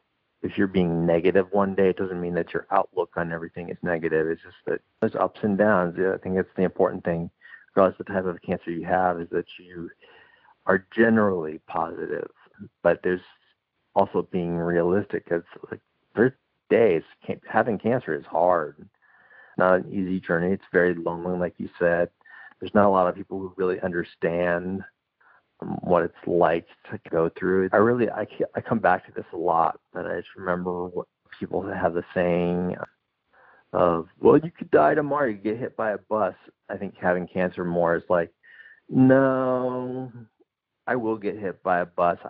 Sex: male